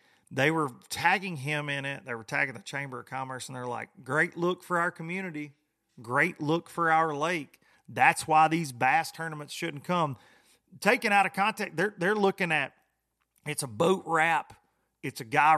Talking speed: 185 wpm